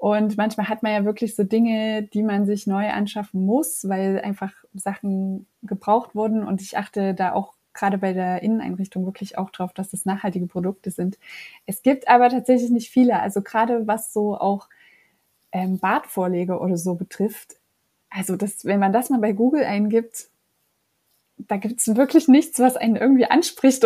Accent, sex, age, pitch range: German, female, 20-39, 200-245 Hz